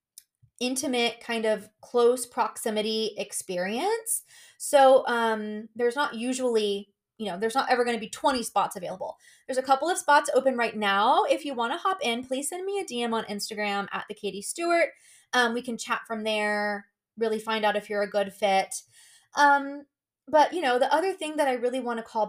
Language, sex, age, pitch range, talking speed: English, female, 20-39, 215-265 Hz, 195 wpm